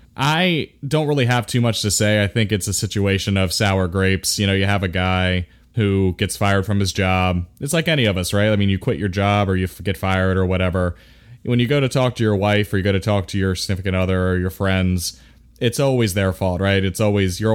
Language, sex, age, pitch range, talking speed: English, male, 20-39, 95-110 Hz, 255 wpm